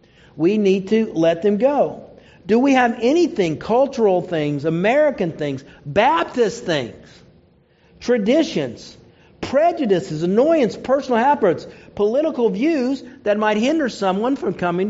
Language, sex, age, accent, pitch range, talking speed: English, male, 50-69, American, 195-265 Hz, 115 wpm